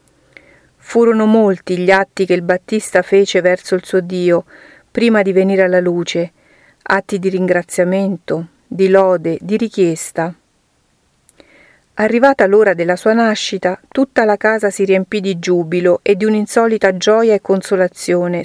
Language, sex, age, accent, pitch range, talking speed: Italian, female, 50-69, native, 180-210 Hz, 135 wpm